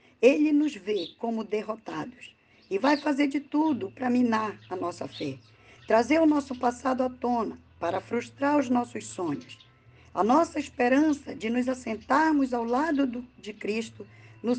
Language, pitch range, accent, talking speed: Portuguese, 195-280 Hz, Brazilian, 150 wpm